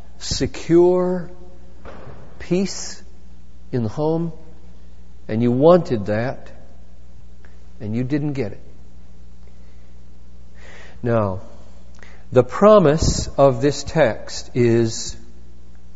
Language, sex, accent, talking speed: English, male, American, 80 wpm